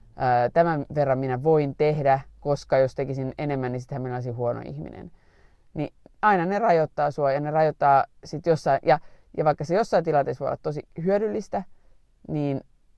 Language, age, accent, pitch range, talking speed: Finnish, 30-49, native, 135-170 Hz, 160 wpm